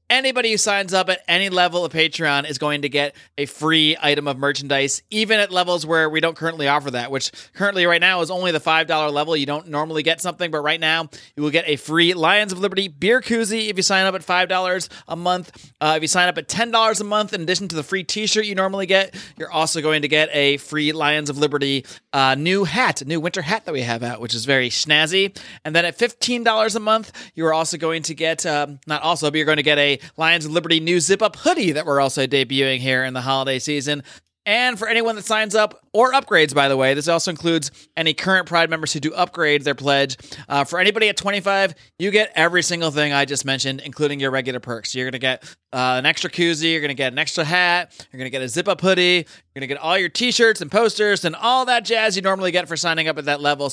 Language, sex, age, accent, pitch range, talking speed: English, male, 30-49, American, 145-185 Hz, 250 wpm